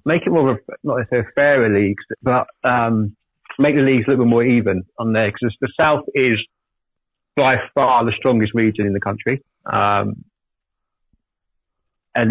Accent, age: British, 30-49